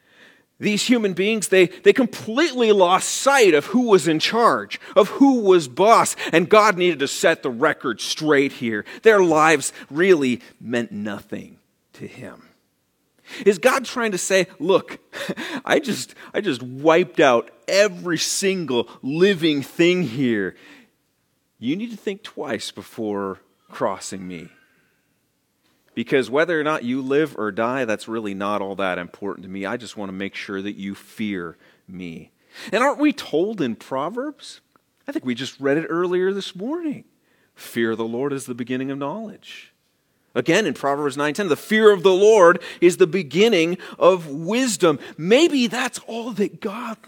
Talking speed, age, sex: 160 wpm, 40-59, male